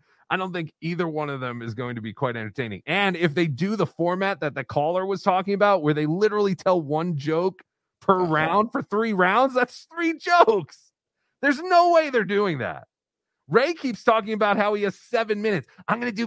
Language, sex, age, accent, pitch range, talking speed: English, male, 30-49, American, 125-195 Hz, 215 wpm